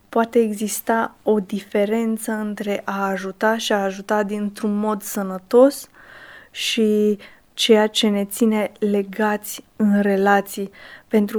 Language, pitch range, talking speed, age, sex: Romanian, 200-225 Hz, 115 wpm, 20-39, female